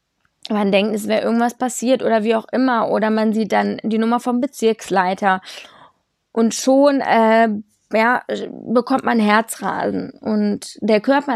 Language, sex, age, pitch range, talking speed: German, female, 20-39, 200-240 Hz, 150 wpm